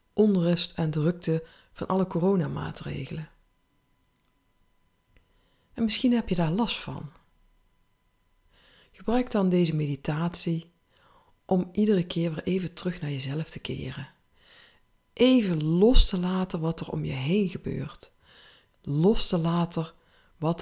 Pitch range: 135-185 Hz